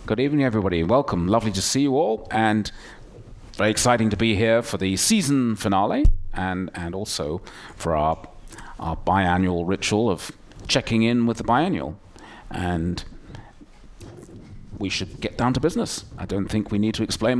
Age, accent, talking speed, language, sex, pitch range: 40-59, British, 160 wpm, English, male, 95-115 Hz